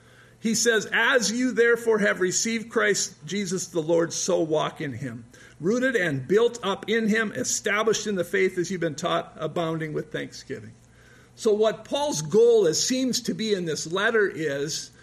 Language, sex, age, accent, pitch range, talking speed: English, male, 50-69, American, 160-210 Hz, 170 wpm